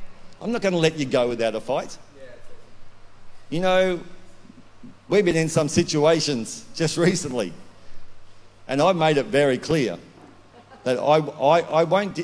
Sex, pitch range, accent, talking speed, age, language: male, 115-165 Hz, Australian, 145 wpm, 50-69, English